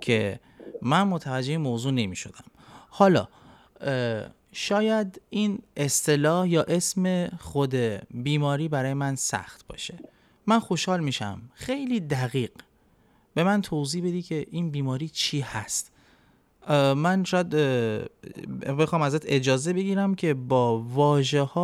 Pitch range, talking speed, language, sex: 120-155 Hz, 110 wpm, Persian, male